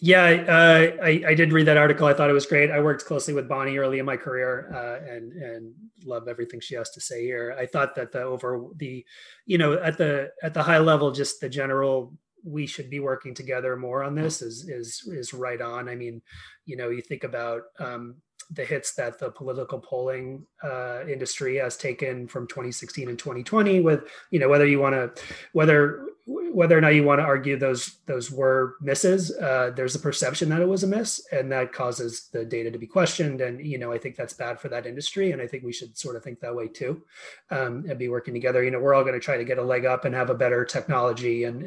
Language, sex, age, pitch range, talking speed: English, male, 30-49, 125-155 Hz, 235 wpm